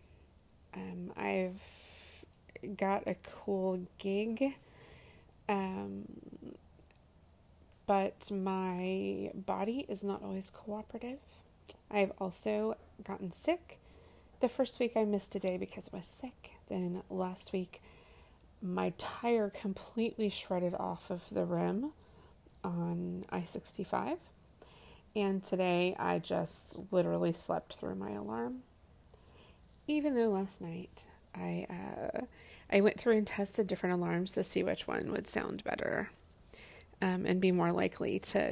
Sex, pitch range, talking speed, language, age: female, 170-205 Hz, 120 wpm, English, 20-39